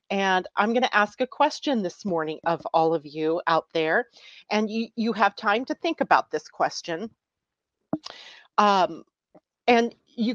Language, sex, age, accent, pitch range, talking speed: English, female, 40-59, American, 175-225 Hz, 160 wpm